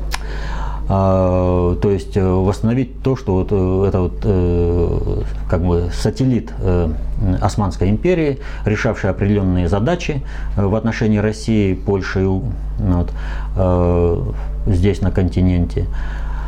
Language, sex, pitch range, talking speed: Russian, male, 85-110 Hz, 85 wpm